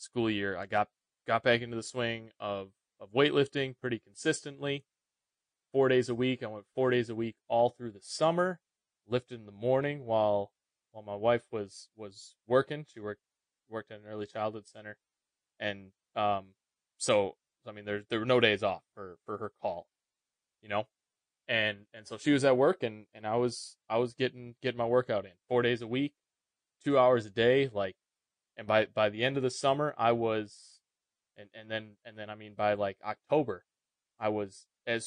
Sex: male